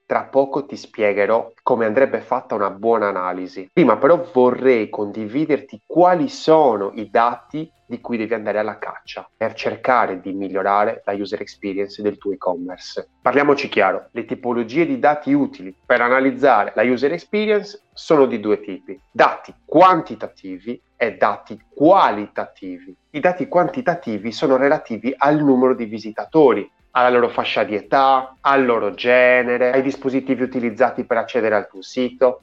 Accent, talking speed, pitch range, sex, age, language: native, 150 wpm, 100-140 Hz, male, 30-49, Italian